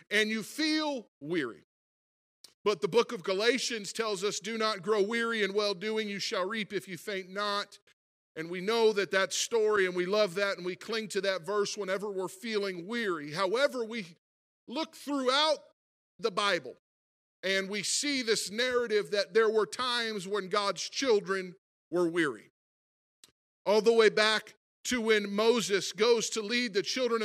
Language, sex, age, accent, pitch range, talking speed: English, male, 40-59, American, 195-230 Hz, 165 wpm